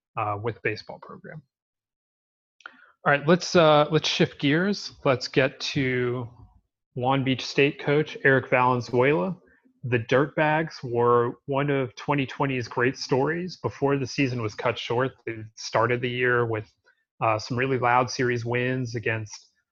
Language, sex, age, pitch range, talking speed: English, male, 30-49, 120-150 Hz, 140 wpm